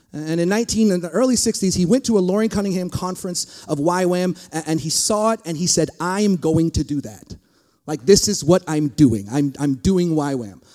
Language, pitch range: English, 175-245 Hz